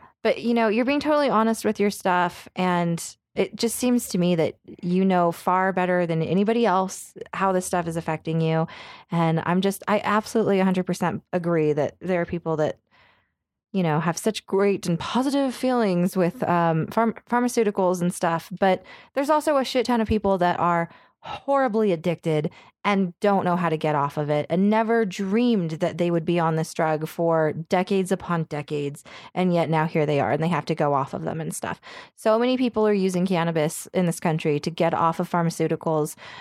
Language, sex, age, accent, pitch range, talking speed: English, female, 20-39, American, 165-205 Hz, 200 wpm